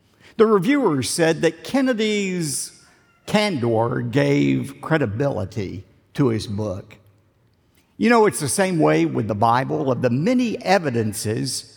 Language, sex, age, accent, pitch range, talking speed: English, male, 50-69, American, 120-185 Hz, 120 wpm